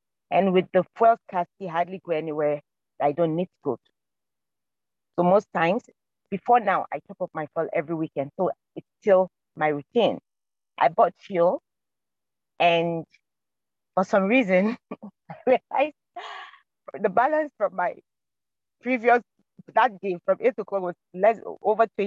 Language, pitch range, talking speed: English, 170-225 Hz, 145 wpm